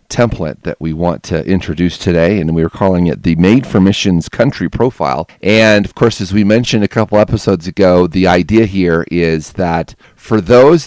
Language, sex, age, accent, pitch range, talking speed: English, male, 40-59, American, 90-110 Hz, 195 wpm